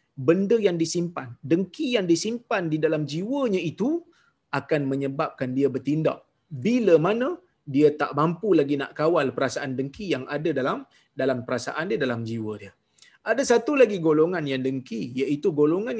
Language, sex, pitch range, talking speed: Malayalam, male, 150-220 Hz, 155 wpm